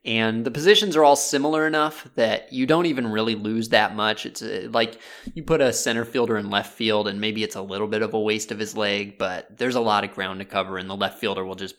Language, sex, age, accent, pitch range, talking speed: English, male, 20-39, American, 110-150 Hz, 260 wpm